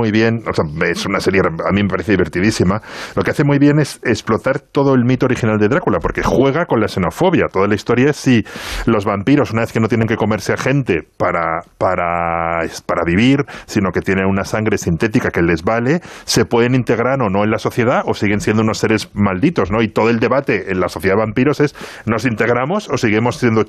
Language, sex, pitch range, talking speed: Spanish, male, 100-130 Hz, 225 wpm